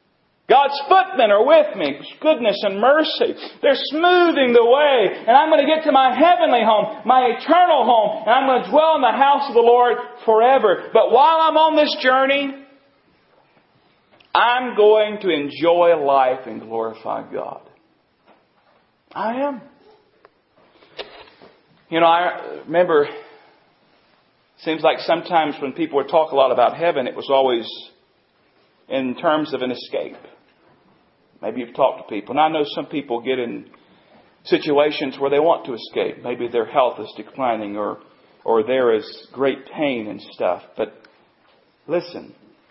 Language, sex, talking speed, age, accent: English, male, 155 wpm, 40-59, American